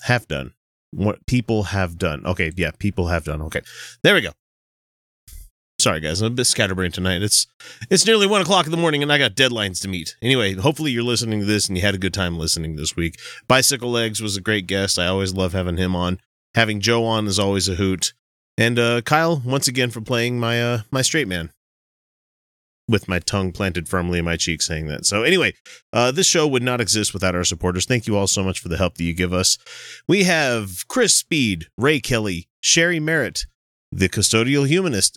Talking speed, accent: 215 wpm, American